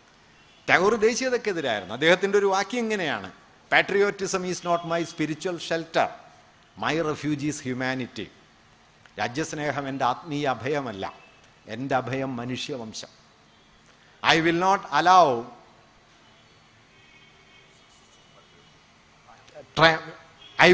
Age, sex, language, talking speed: 50-69, male, Malayalam, 65 wpm